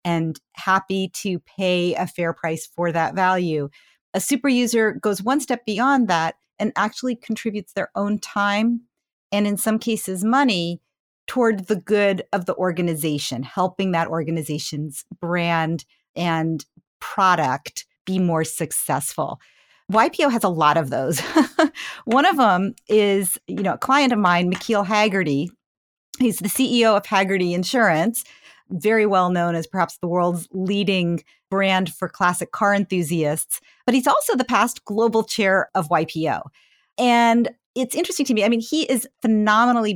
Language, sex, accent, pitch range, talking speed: English, female, American, 175-235 Hz, 145 wpm